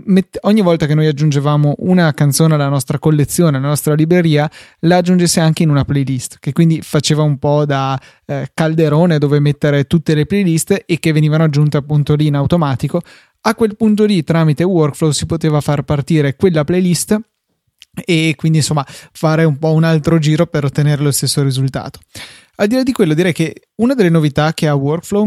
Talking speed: 190 wpm